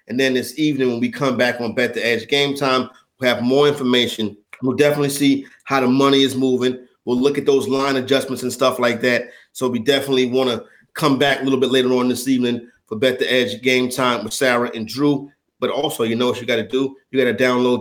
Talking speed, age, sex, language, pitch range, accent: 245 wpm, 30-49, male, English, 130-155 Hz, American